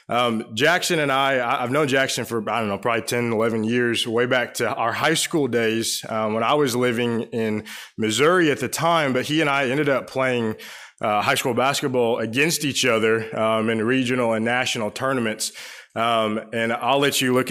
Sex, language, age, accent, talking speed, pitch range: male, English, 20-39, American, 200 wpm, 110-130 Hz